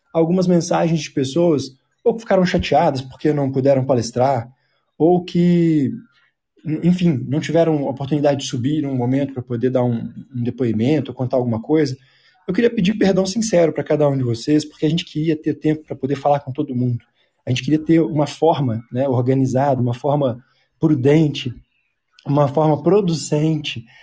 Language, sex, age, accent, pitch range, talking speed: Portuguese, male, 20-39, Brazilian, 135-160 Hz, 170 wpm